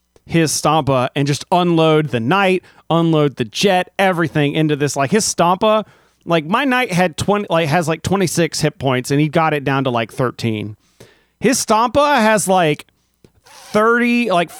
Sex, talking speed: male, 170 wpm